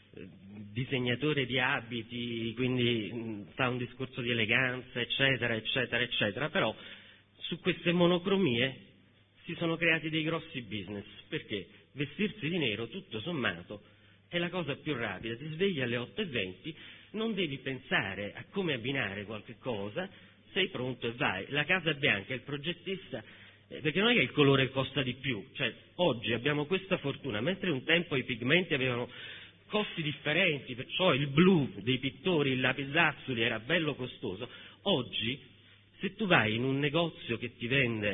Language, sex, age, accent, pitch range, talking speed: Italian, male, 40-59, native, 110-160 Hz, 155 wpm